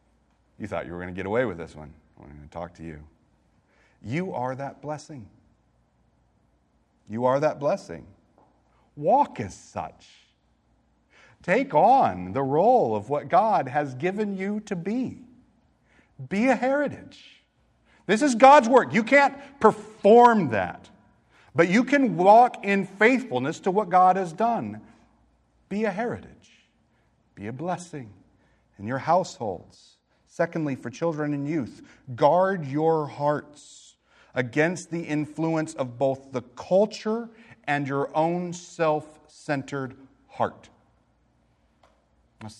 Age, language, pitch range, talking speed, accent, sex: 40-59, English, 115-180 Hz, 130 wpm, American, male